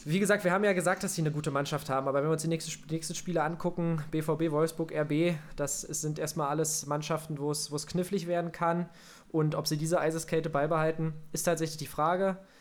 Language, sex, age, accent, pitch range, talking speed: German, male, 20-39, German, 140-165 Hz, 210 wpm